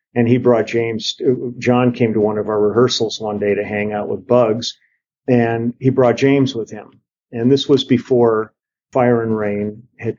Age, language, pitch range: 50-69, English, 110-130 Hz